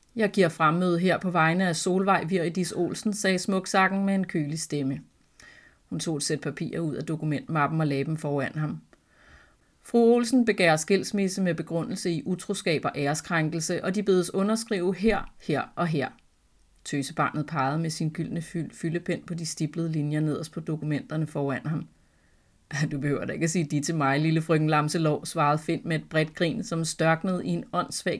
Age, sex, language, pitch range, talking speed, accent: 30-49, female, Danish, 150-180 Hz, 185 wpm, native